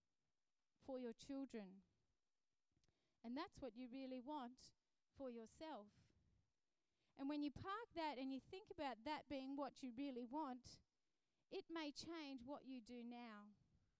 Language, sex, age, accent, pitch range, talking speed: English, female, 30-49, Australian, 255-320 Hz, 140 wpm